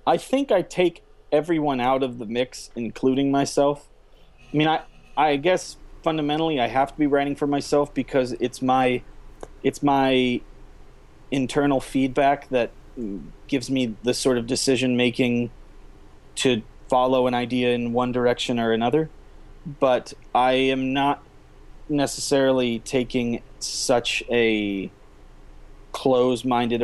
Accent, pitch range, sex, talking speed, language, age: American, 115-140 Hz, male, 125 wpm, English, 30-49